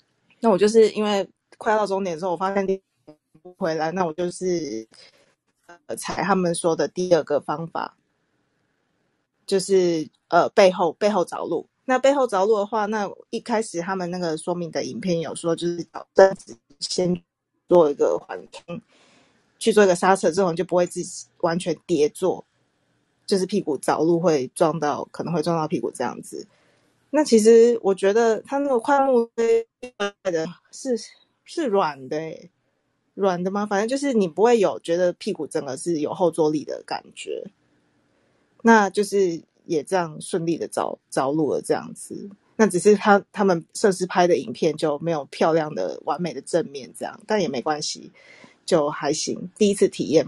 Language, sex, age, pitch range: Chinese, female, 20-39, 165-210 Hz